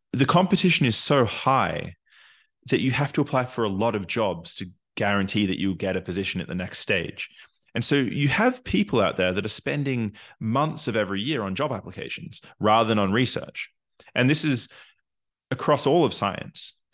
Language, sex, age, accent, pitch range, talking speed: English, male, 20-39, Australian, 95-130 Hz, 190 wpm